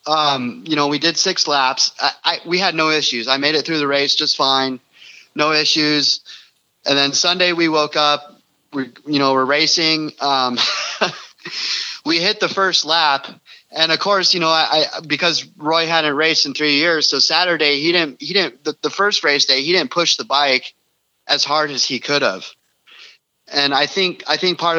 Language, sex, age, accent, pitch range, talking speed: English, male, 30-49, American, 140-160 Hz, 200 wpm